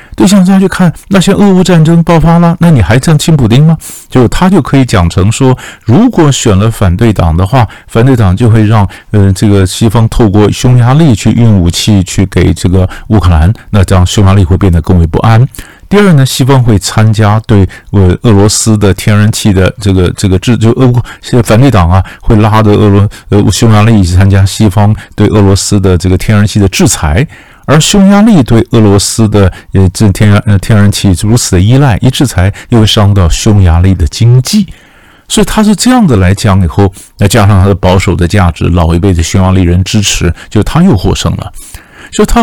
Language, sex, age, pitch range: Chinese, male, 50-69, 95-120 Hz